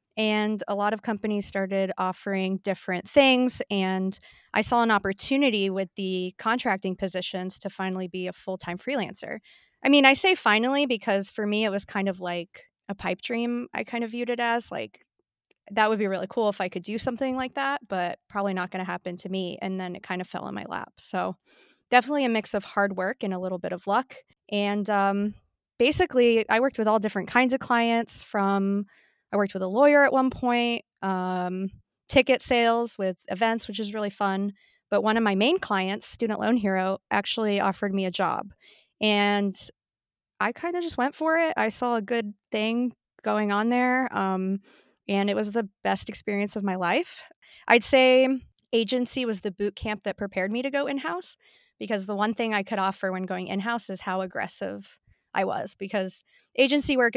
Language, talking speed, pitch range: English, 200 wpm, 195-240 Hz